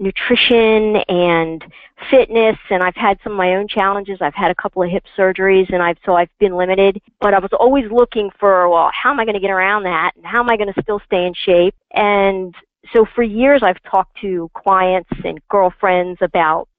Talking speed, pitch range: 215 wpm, 190-250 Hz